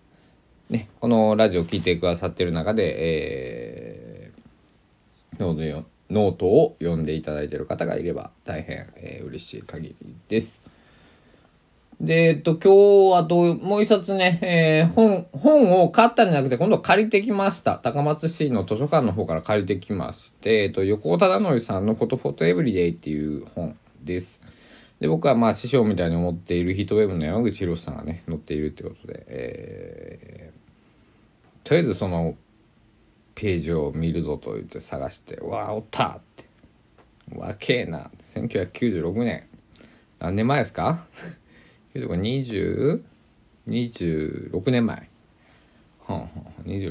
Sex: male